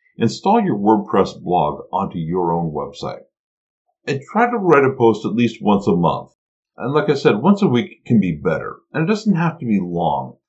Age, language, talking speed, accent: 50-69, English, 205 wpm, American